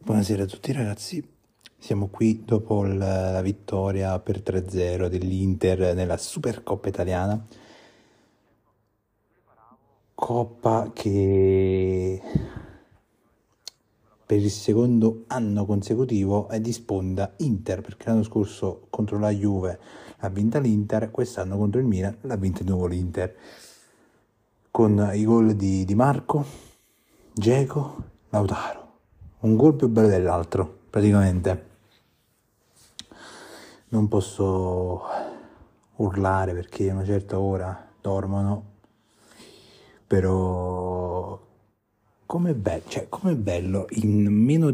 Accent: native